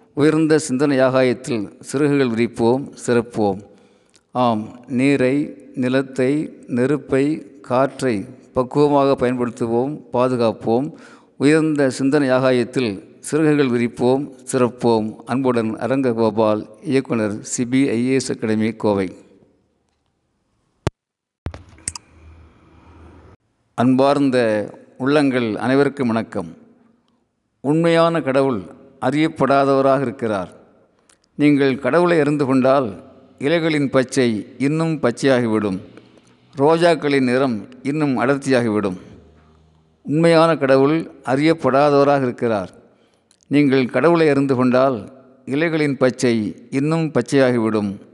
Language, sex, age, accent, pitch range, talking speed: Tamil, male, 50-69, native, 115-140 Hz, 70 wpm